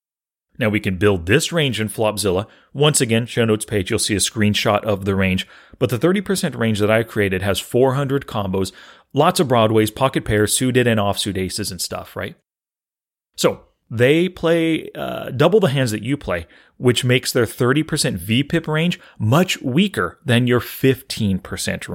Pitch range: 105-155 Hz